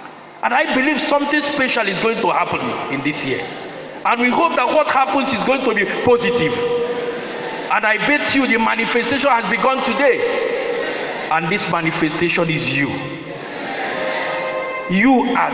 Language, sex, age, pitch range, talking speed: English, male, 50-69, 175-280 Hz, 150 wpm